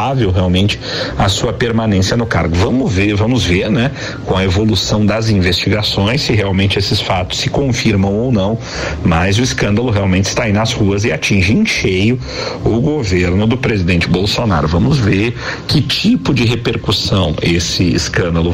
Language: Portuguese